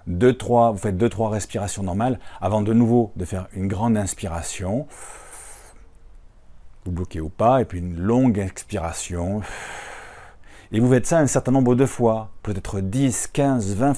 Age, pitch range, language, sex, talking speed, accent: 40-59, 90-120 Hz, French, male, 160 wpm, French